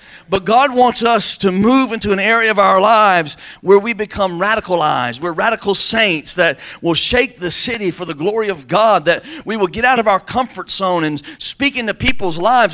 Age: 50-69